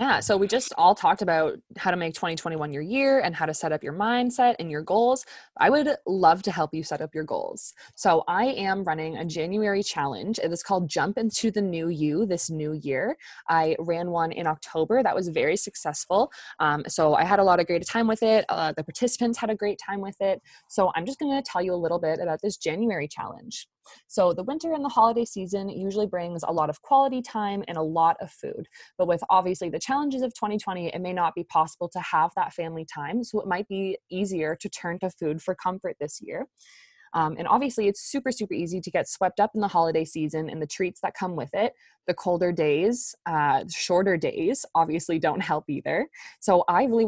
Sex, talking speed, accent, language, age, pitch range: female, 225 wpm, American, English, 20-39, 165-220 Hz